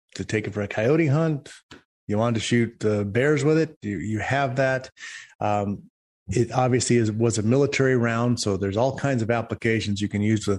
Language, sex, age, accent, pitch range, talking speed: English, male, 30-49, American, 105-125 Hz, 215 wpm